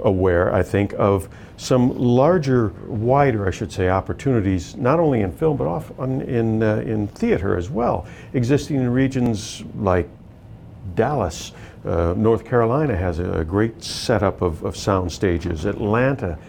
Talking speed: 145 wpm